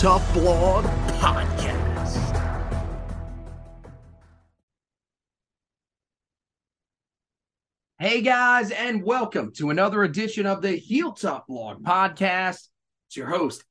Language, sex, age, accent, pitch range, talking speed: English, male, 30-49, American, 145-205 Hz, 80 wpm